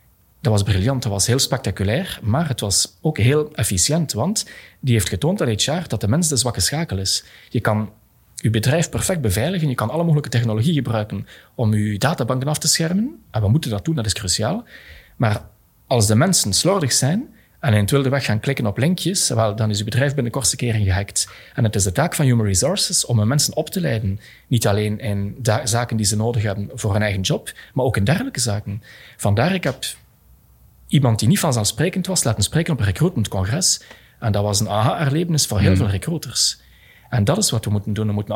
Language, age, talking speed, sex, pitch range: Dutch, 30-49, 220 wpm, male, 105-150 Hz